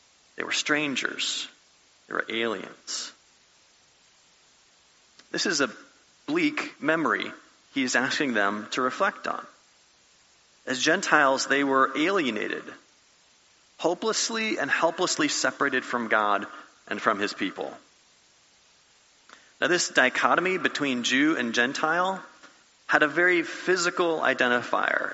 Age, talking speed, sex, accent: 30-49, 105 wpm, male, American